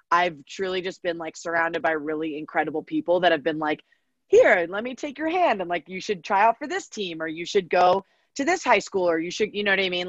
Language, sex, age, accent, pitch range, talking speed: English, female, 20-39, American, 165-210 Hz, 270 wpm